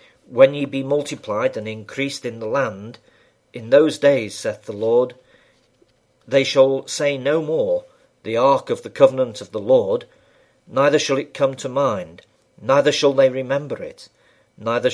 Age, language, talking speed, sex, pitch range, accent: 50-69, English, 160 wpm, male, 120-180 Hz, British